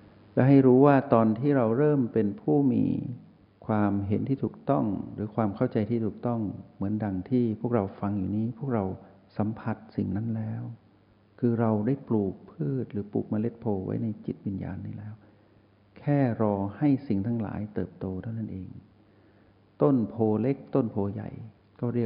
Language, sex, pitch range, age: Thai, male, 100-115 Hz, 60-79